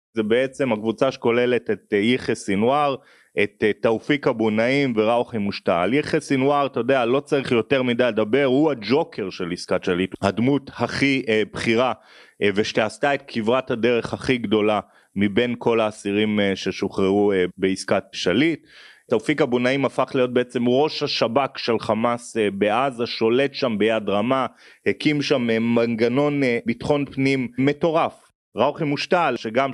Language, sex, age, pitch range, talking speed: Hebrew, male, 30-49, 115-135 Hz, 135 wpm